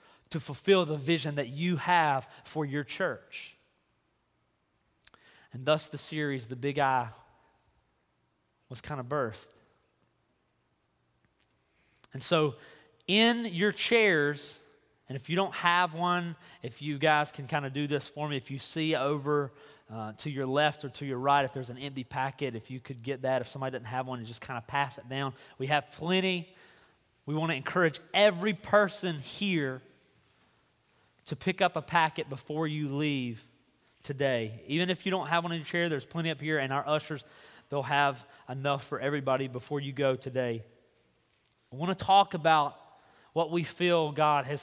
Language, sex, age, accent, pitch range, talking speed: English, male, 30-49, American, 135-170 Hz, 175 wpm